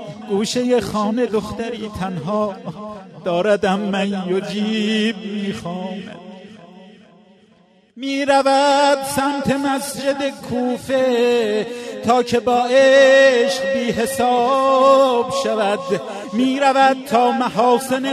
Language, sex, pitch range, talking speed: Persian, male, 215-270 Hz, 75 wpm